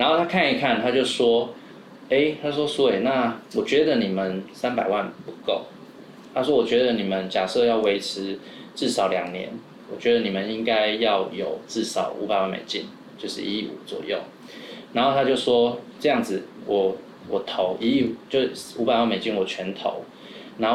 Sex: male